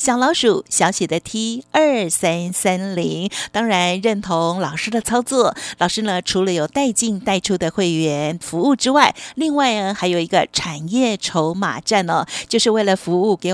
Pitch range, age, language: 175-225 Hz, 50-69, Chinese